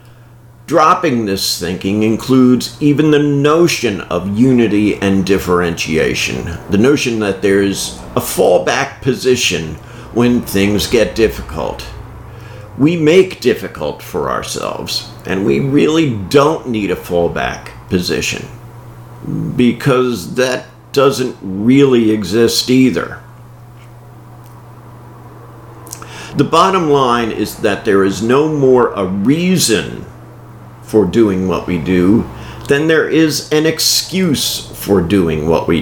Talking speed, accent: 110 wpm, American